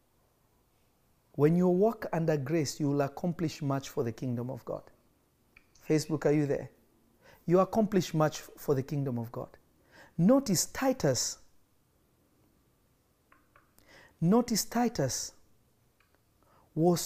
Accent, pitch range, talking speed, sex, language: South African, 140-195 Hz, 110 wpm, male, English